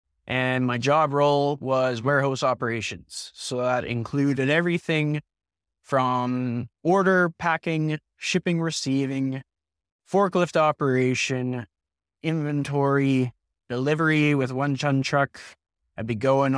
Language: English